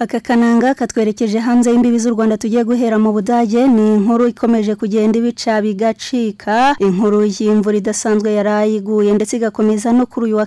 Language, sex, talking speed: Indonesian, female, 140 wpm